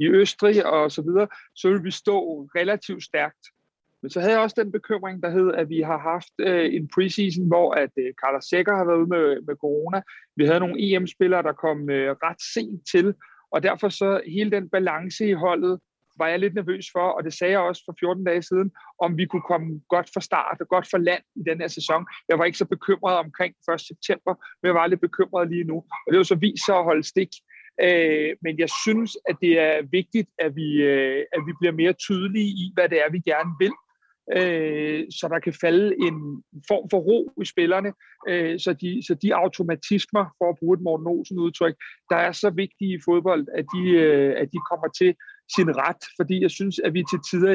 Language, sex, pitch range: Danish, male, 165-190 Hz